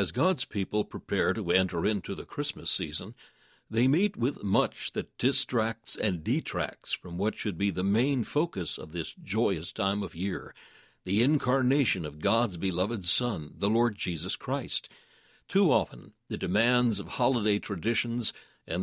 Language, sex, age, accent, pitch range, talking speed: English, male, 60-79, American, 100-130 Hz, 155 wpm